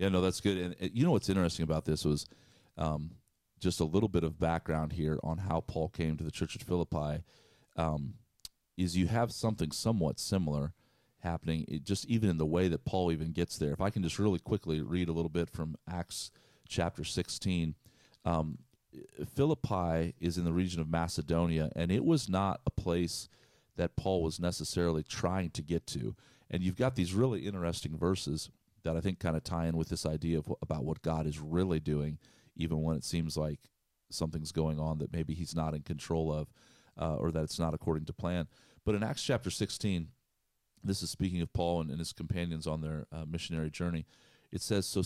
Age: 40-59